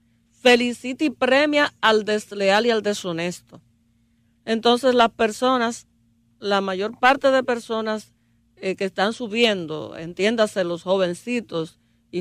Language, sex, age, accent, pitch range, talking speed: Spanish, female, 40-59, American, 175-240 Hz, 120 wpm